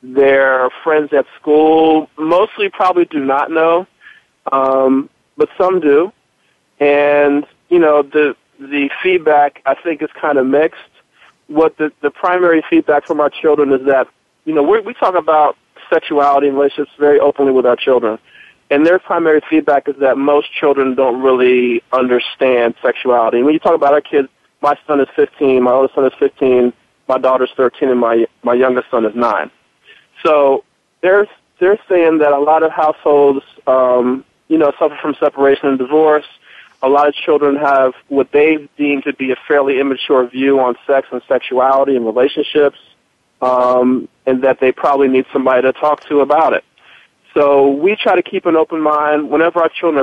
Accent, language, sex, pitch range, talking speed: American, English, male, 130-155 Hz, 180 wpm